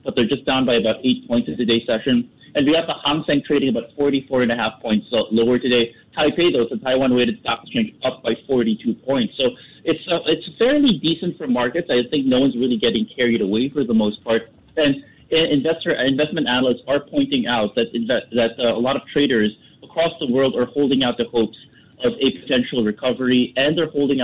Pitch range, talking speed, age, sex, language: 115-150 Hz, 215 wpm, 30-49, male, English